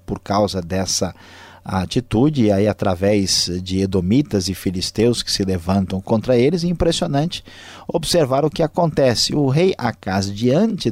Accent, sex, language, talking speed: Brazilian, male, Portuguese, 145 wpm